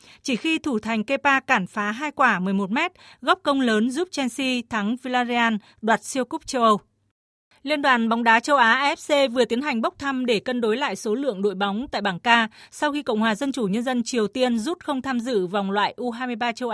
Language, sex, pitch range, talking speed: Vietnamese, female, 200-260 Hz, 230 wpm